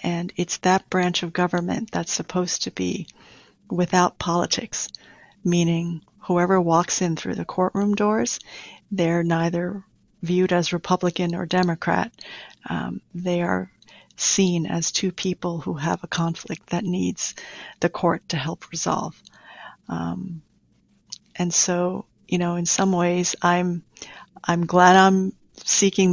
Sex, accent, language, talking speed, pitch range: female, American, English, 135 wpm, 175-190 Hz